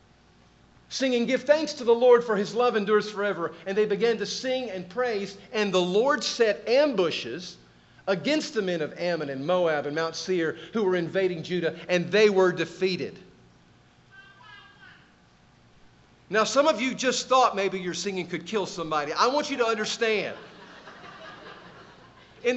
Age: 50-69